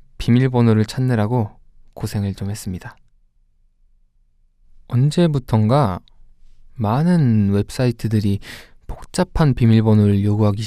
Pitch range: 100-125 Hz